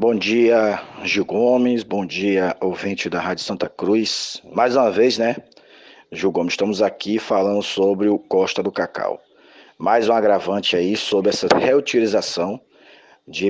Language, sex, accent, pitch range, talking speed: Portuguese, male, Brazilian, 100-115 Hz, 145 wpm